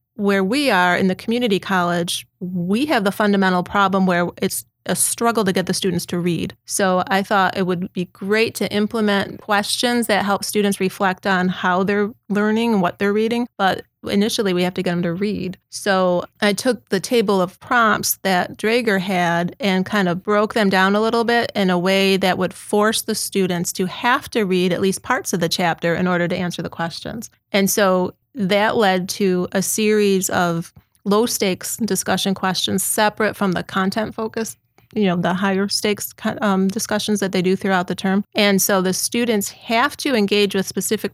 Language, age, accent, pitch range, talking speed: English, 30-49, American, 185-210 Hz, 195 wpm